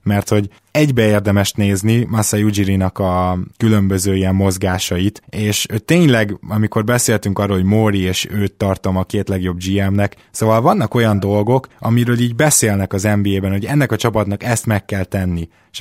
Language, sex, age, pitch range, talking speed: Hungarian, male, 20-39, 95-125 Hz, 165 wpm